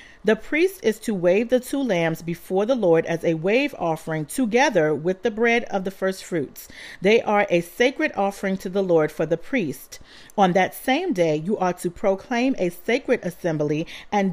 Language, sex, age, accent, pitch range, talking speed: English, female, 40-59, American, 170-235 Hz, 195 wpm